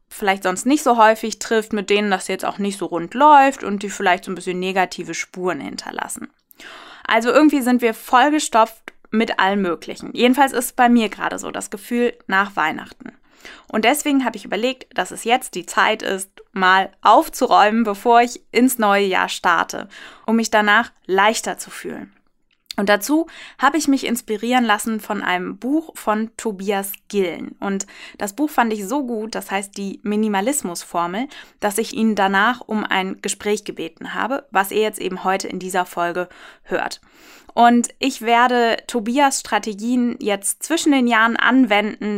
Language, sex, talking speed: German, female, 170 wpm